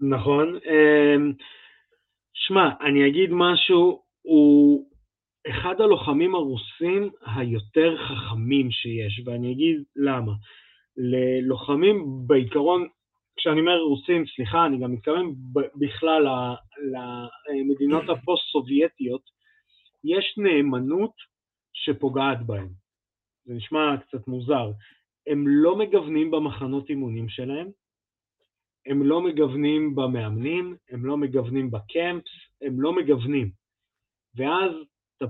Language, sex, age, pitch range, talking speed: Hebrew, male, 20-39, 125-165 Hz, 95 wpm